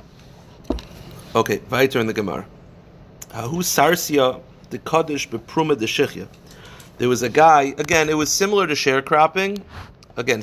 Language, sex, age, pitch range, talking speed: English, male, 40-59, 115-160 Hz, 90 wpm